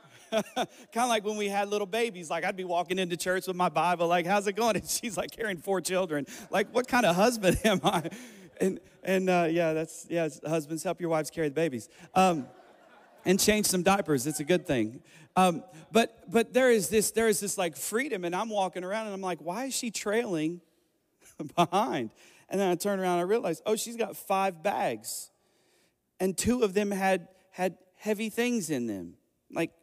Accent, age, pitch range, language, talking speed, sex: American, 40-59, 165-210 Hz, English, 205 wpm, male